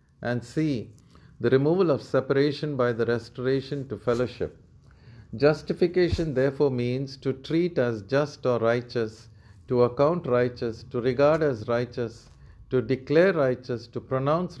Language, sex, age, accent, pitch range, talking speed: English, male, 50-69, Indian, 110-135 Hz, 130 wpm